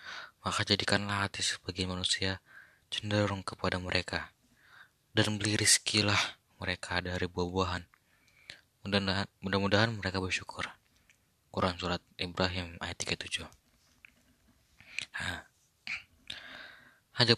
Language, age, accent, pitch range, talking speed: Indonesian, 20-39, native, 90-105 Hz, 80 wpm